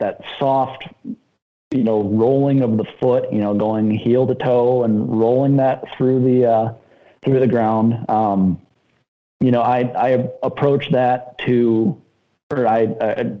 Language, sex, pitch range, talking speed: English, male, 110-130 Hz, 150 wpm